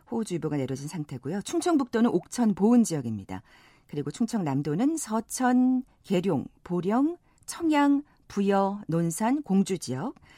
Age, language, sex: 40-59, Korean, female